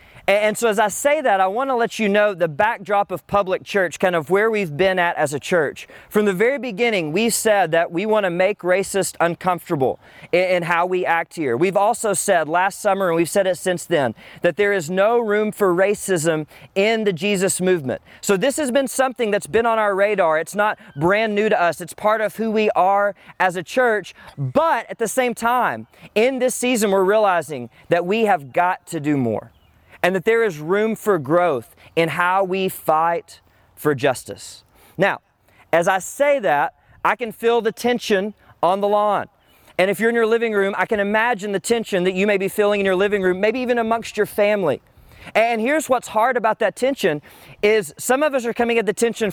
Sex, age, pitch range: male, 30-49, 175-230 Hz